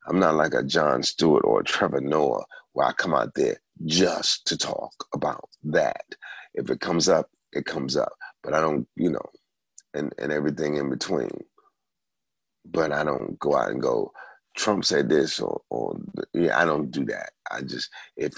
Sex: male